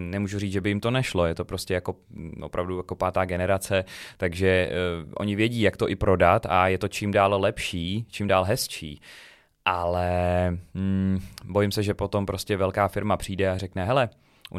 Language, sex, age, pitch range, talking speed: Czech, male, 20-39, 85-100 Hz, 190 wpm